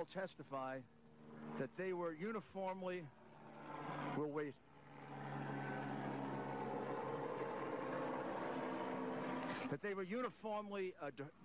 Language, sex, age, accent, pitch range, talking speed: English, male, 60-79, American, 135-170 Hz, 70 wpm